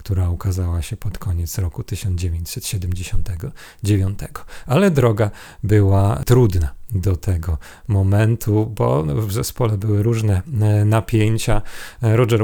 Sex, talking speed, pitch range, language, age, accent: male, 100 wpm, 100-115 Hz, Polish, 40-59, native